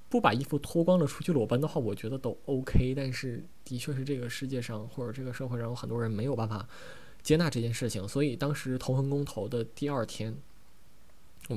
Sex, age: male, 20-39